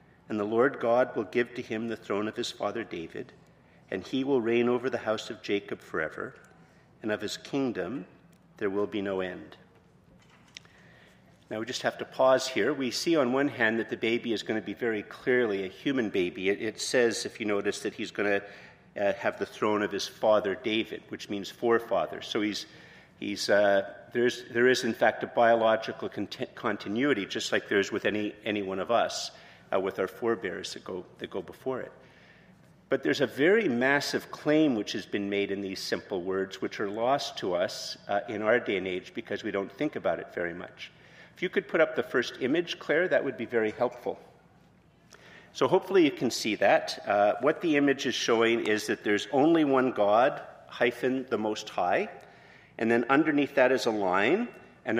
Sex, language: male, English